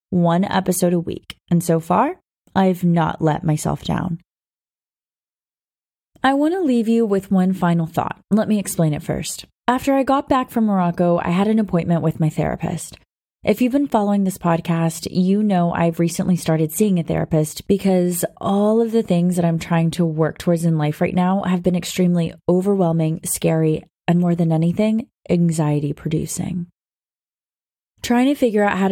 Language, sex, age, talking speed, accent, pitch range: English, female, 20-39, 170 wpm, American, 165-200 Hz